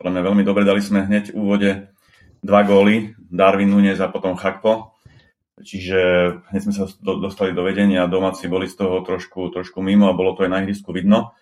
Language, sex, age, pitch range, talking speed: Slovak, male, 30-49, 90-105 Hz, 200 wpm